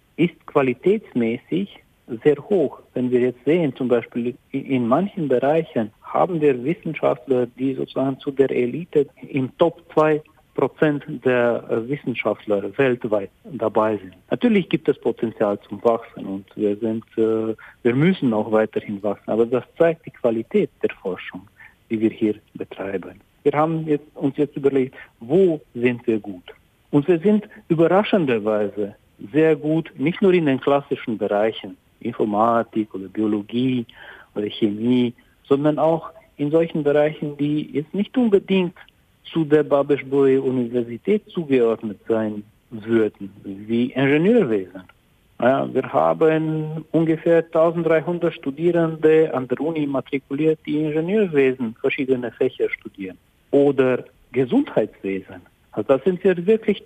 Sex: male